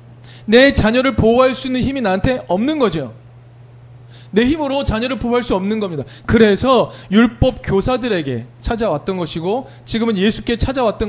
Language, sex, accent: Korean, male, native